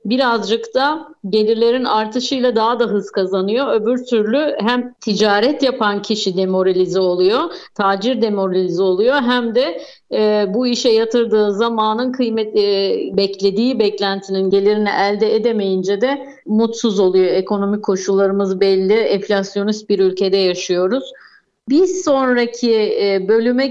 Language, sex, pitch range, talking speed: Turkish, female, 205-255 Hz, 115 wpm